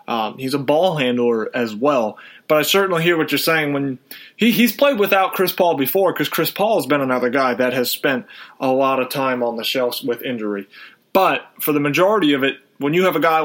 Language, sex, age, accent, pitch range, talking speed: English, male, 30-49, American, 130-165 Hz, 230 wpm